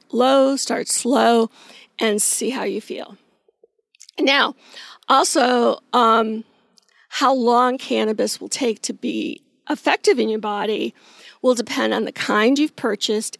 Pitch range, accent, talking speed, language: 225-280 Hz, American, 130 wpm, English